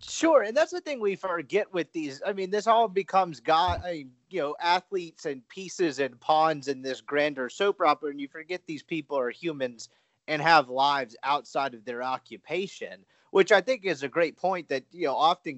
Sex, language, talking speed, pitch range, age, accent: male, English, 200 wpm, 140-200 Hz, 30-49, American